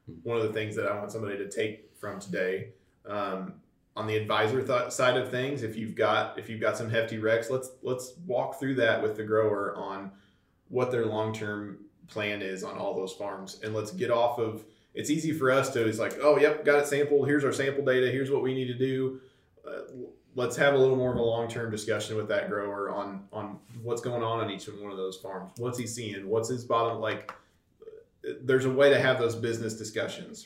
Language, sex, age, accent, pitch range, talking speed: English, male, 20-39, American, 105-130 Hz, 225 wpm